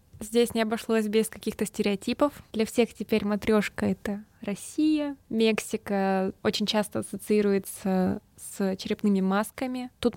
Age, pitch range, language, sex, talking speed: 20-39, 200-230 Hz, Russian, female, 120 wpm